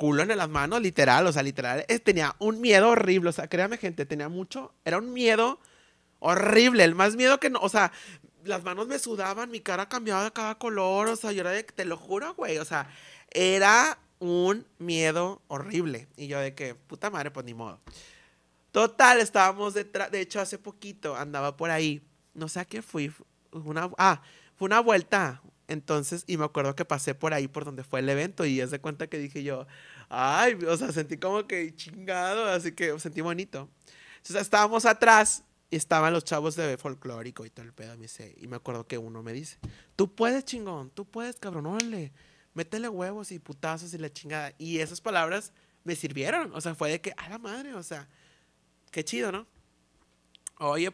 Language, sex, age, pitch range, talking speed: Spanish, male, 30-49, 145-205 Hz, 205 wpm